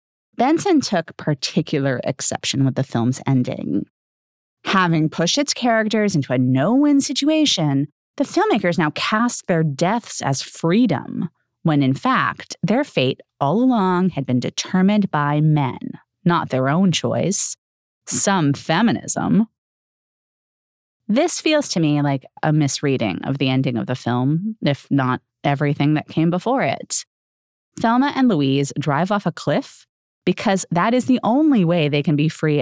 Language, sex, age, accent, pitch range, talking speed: English, female, 30-49, American, 140-225 Hz, 145 wpm